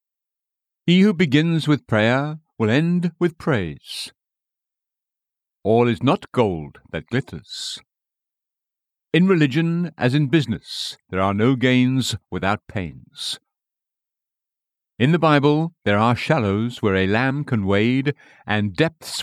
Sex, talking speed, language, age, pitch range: male, 120 wpm, English, 60-79, 110-155 Hz